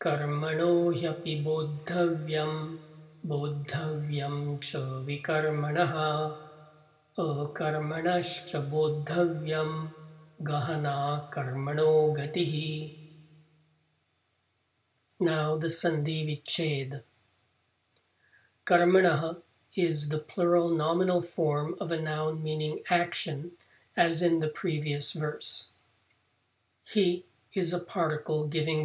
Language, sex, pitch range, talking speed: English, male, 145-170 Hz, 75 wpm